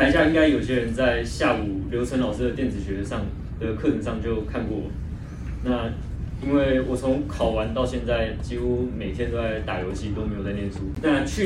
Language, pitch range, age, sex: Chinese, 100-125 Hz, 20-39, male